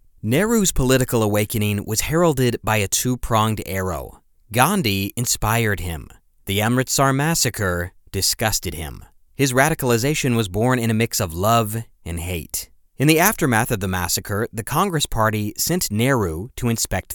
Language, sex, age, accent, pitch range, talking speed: English, male, 30-49, American, 95-125 Hz, 145 wpm